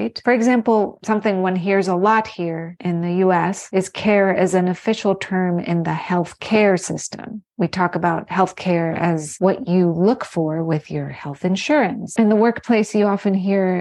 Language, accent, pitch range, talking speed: English, American, 175-210 Hz, 180 wpm